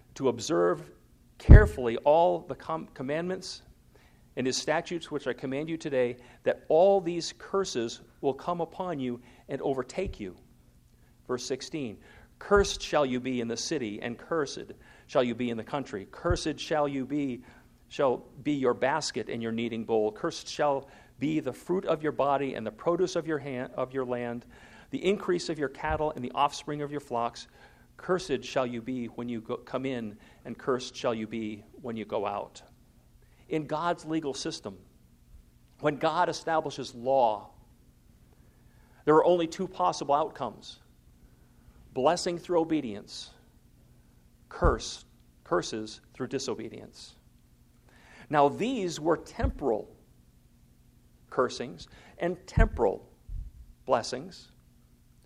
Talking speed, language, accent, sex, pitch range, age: 140 wpm, English, American, male, 115-160 Hz, 40-59